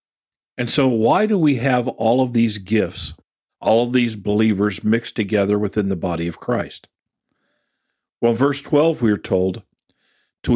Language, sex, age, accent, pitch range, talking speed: English, male, 50-69, American, 110-145 Hz, 160 wpm